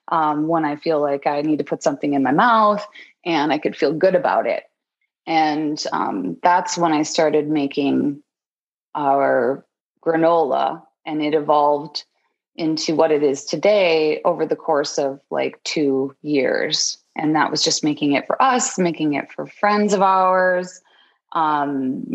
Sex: female